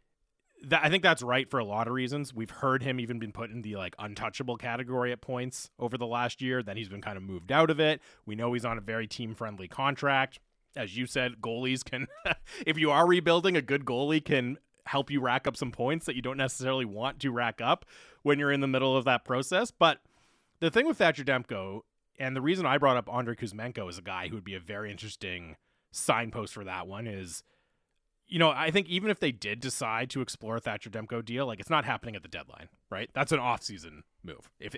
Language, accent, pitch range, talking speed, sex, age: English, American, 110-145 Hz, 230 wpm, male, 30-49